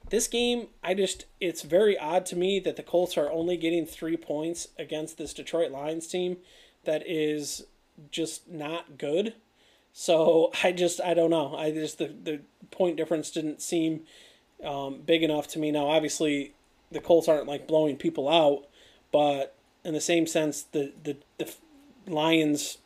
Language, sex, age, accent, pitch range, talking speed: English, male, 30-49, American, 150-170 Hz, 165 wpm